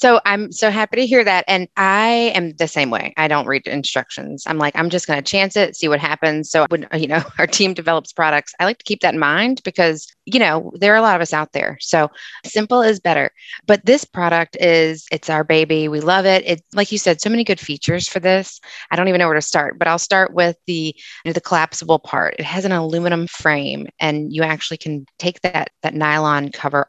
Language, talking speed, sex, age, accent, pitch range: English, 240 wpm, female, 20-39, American, 155-190 Hz